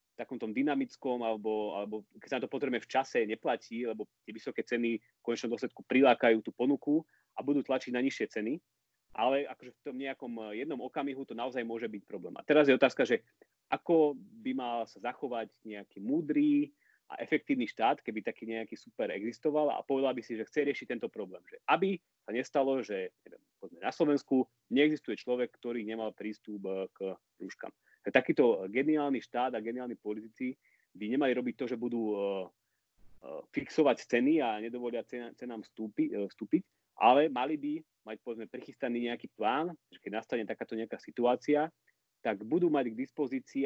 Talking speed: 165 wpm